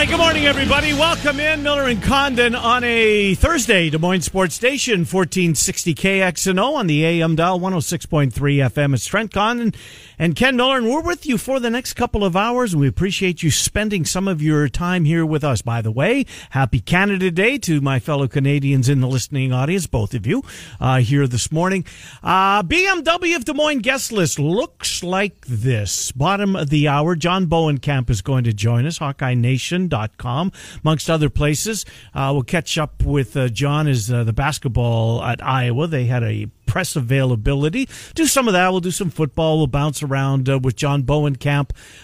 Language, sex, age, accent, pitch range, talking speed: English, male, 50-69, American, 130-190 Hz, 190 wpm